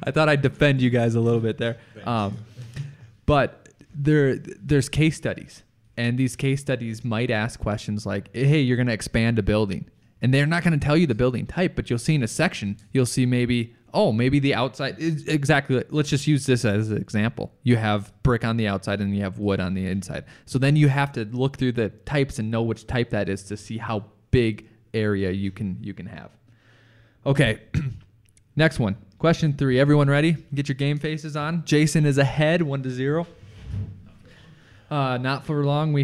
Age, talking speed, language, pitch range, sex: 20-39, 210 wpm, English, 110-145 Hz, male